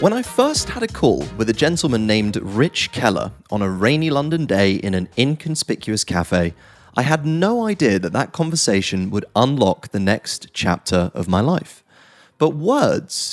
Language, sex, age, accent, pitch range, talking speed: English, male, 30-49, British, 105-155 Hz, 170 wpm